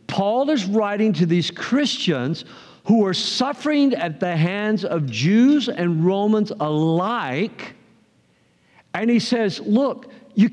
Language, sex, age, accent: English, male, 50-69, American